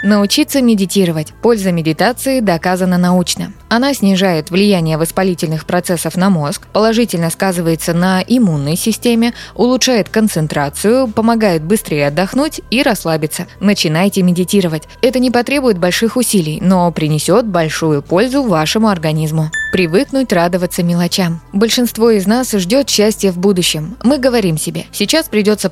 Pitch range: 170-225 Hz